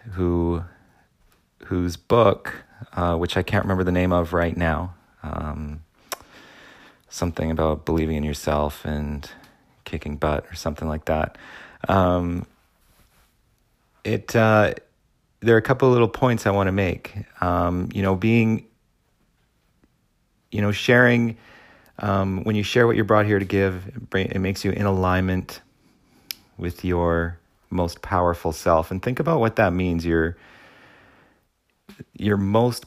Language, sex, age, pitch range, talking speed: English, male, 30-49, 85-110 Hz, 140 wpm